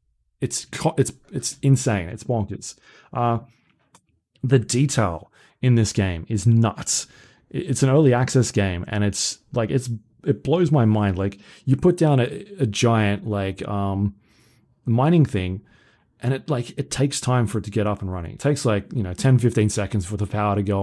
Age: 20-39